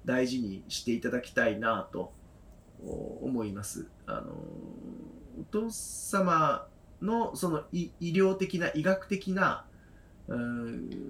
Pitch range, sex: 115-180 Hz, male